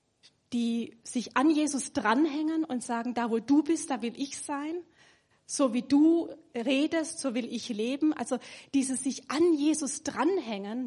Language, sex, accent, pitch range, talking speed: German, female, German, 230-285 Hz, 160 wpm